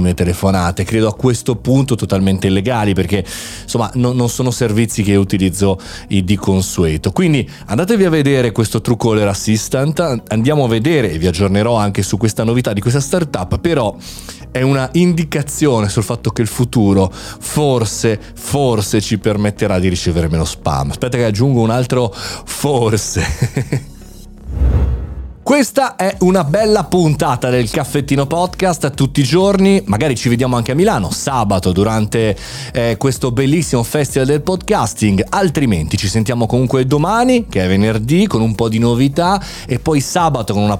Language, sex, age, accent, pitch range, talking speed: Italian, male, 30-49, native, 100-145 Hz, 155 wpm